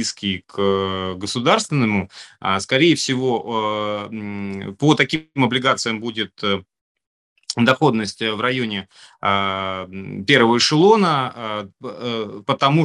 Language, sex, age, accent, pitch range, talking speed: Russian, male, 30-49, native, 100-130 Hz, 65 wpm